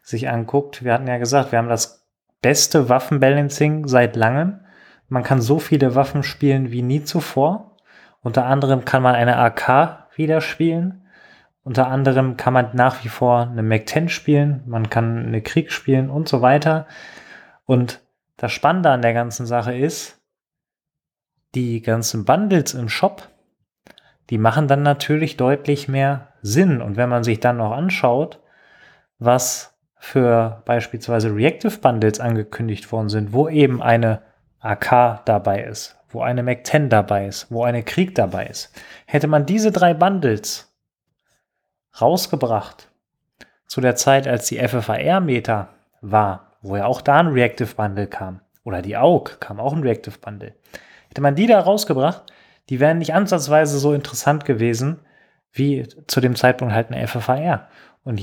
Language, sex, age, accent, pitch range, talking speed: German, male, 20-39, German, 115-145 Hz, 150 wpm